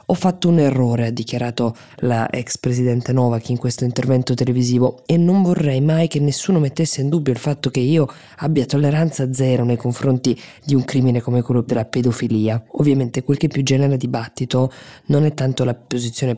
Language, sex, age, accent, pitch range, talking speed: Italian, female, 20-39, native, 125-150 Hz, 180 wpm